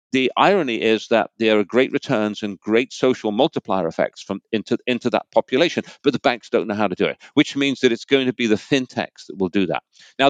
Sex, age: male, 40-59